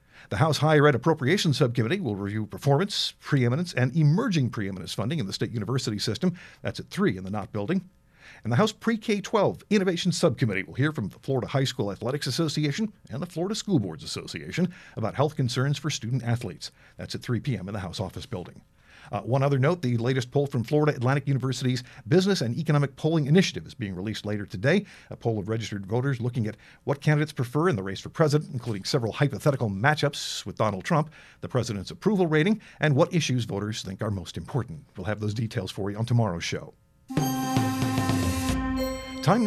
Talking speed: 190 wpm